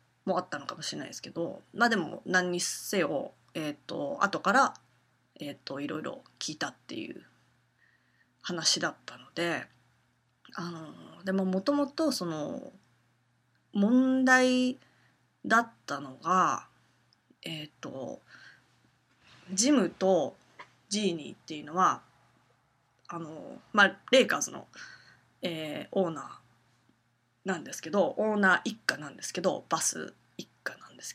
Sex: female